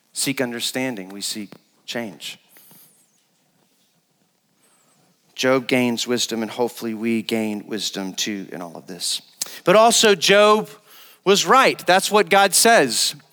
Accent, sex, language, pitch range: American, male, English, 145-190 Hz